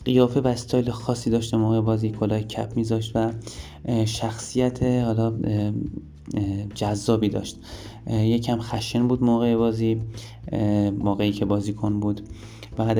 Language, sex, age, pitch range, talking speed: Persian, male, 20-39, 105-115 Hz, 125 wpm